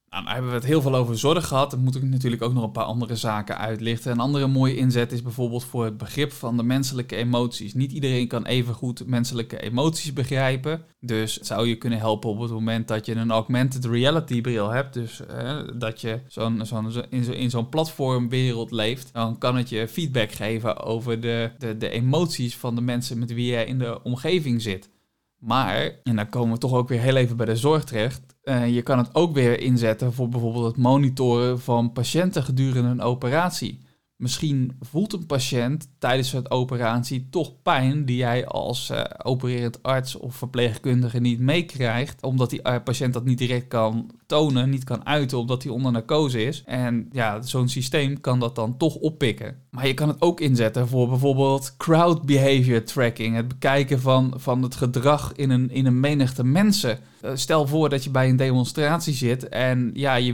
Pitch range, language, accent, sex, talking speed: 120-135 Hz, Dutch, Dutch, male, 200 wpm